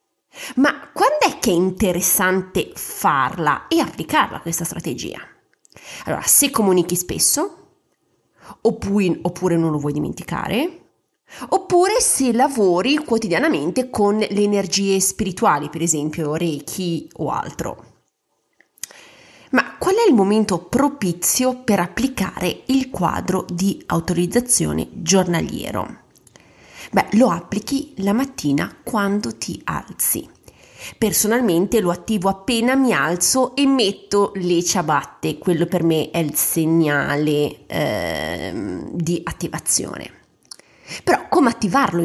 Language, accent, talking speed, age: Italian, native, 110 wpm, 30-49